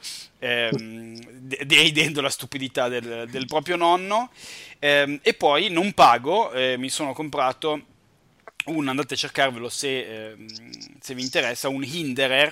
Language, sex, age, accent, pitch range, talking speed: Italian, male, 30-49, native, 115-135 Hz, 130 wpm